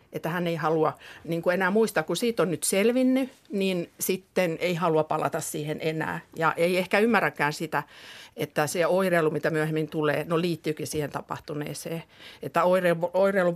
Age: 50-69